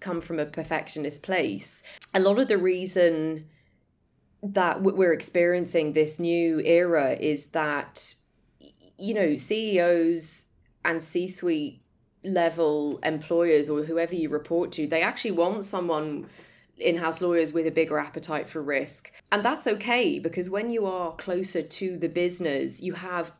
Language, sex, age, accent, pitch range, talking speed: English, female, 20-39, British, 150-180 Hz, 140 wpm